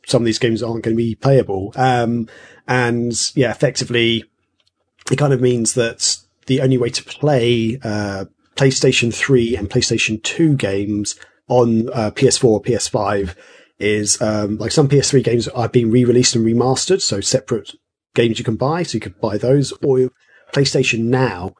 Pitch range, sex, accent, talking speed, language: 105-130 Hz, male, British, 165 wpm, English